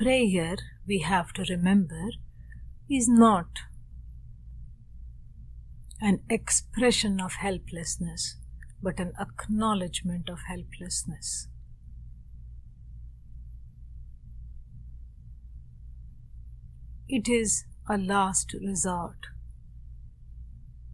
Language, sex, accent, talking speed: English, female, Indian, 60 wpm